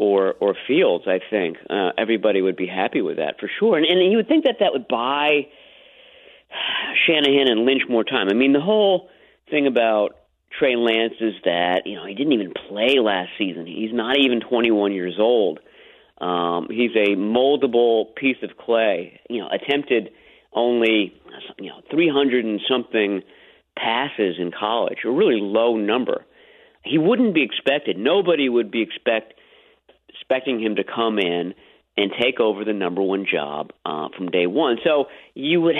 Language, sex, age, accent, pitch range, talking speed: English, male, 40-59, American, 95-130 Hz, 170 wpm